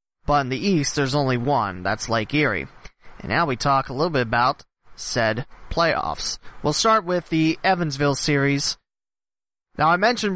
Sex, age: male, 30-49